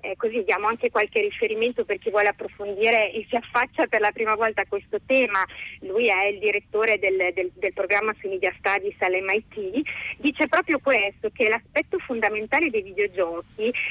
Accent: native